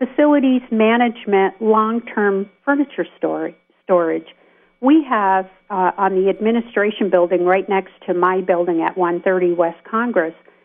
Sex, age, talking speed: female, 50-69, 120 wpm